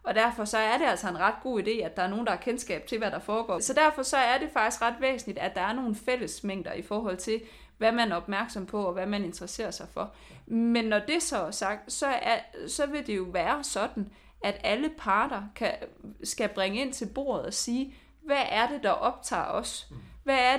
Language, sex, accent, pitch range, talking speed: Danish, female, native, 195-255 Hz, 235 wpm